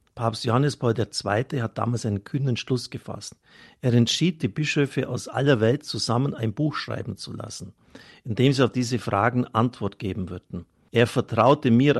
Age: 50-69